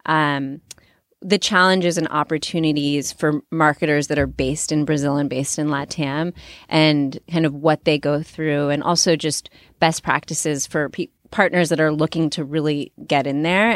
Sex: female